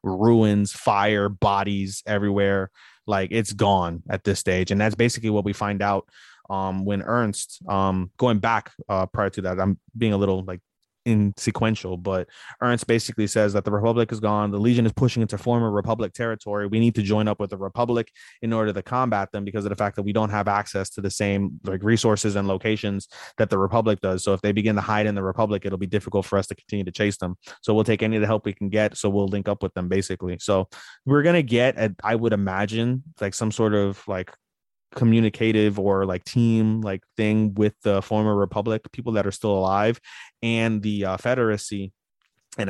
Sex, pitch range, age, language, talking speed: male, 100-115 Hz, 20-39, English, 215 wpm